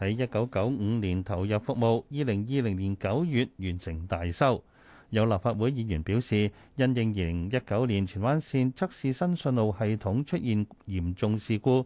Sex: male